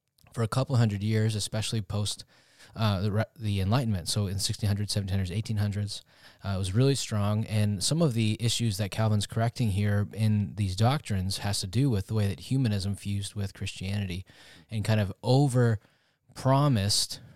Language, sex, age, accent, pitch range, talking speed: English, male, 20-39, American, 100-115 Hz, 165 wpm